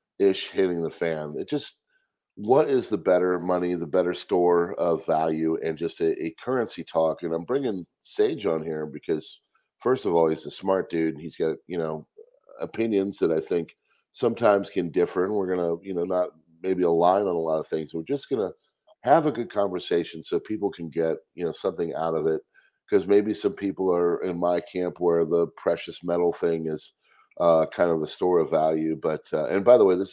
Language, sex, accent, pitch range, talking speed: English, male, American, 80-95 Hz, 210 wpm